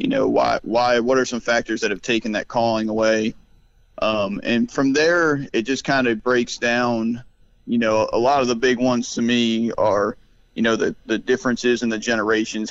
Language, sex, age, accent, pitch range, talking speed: English, male, 30-49, American, 115-125 Hz, 205 wpm